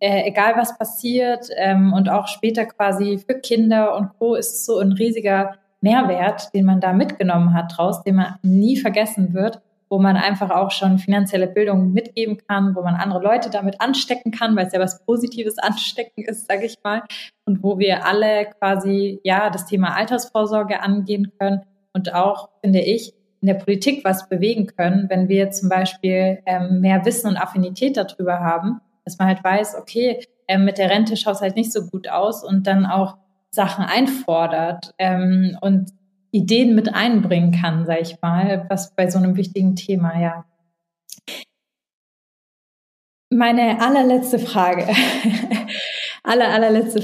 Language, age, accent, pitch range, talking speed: German, 20-39, German, 190-225 Hz, 165 wpm